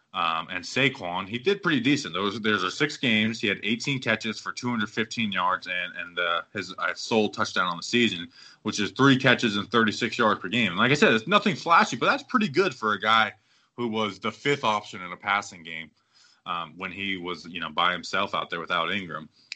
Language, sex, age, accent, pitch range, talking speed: English, male, 20-39, American, 100-140 Hz, 225 wpm